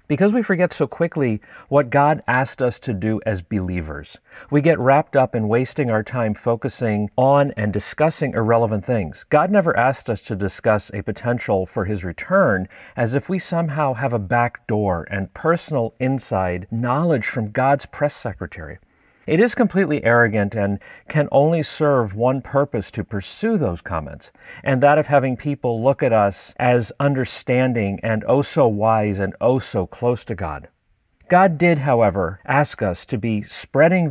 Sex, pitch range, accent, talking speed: male, 105-145 Hz, American, 165 wpm